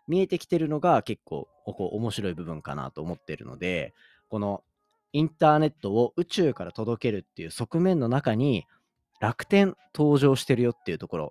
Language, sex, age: Japanese, male, 30-49